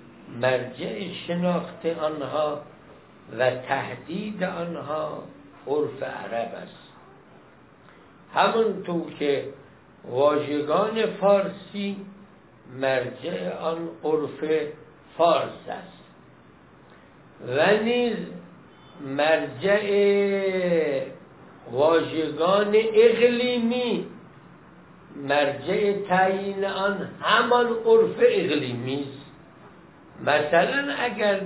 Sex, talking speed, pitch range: male, 60 wpm, 150-205 Hz